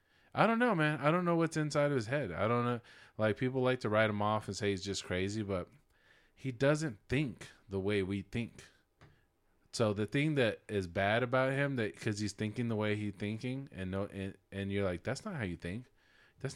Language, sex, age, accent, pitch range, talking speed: English, male, 20-39, American, 100-140 Hz, 230 wpm